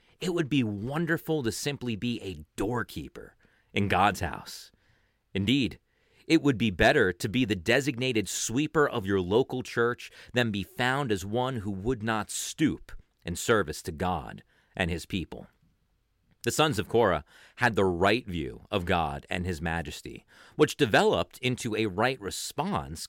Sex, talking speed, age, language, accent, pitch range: male, 160 wpm, 40-59, German, American, 95-125 Hz